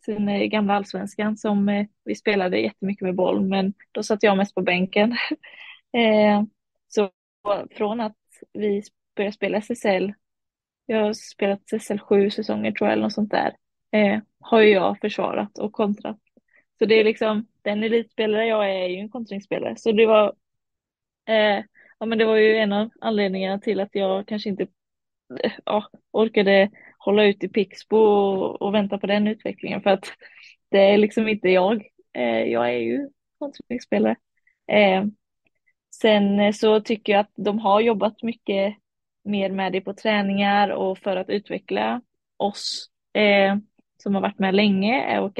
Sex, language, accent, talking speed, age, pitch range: female, Swedish, native, 150 wpm, 20-39, 195-220 Hz